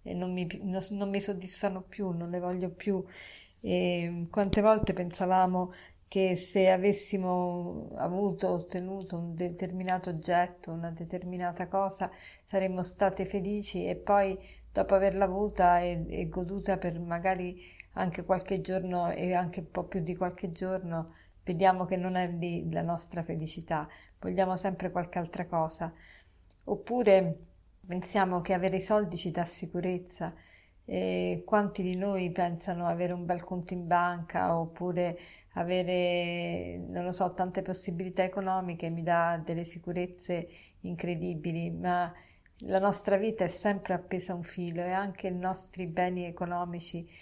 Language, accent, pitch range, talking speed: Italian, native, 175-190 Hz, 140 wpm